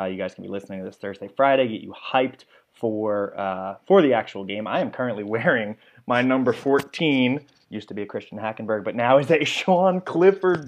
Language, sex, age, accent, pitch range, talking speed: English, male, 20-39, American, 105-140 Hz, 215 wpm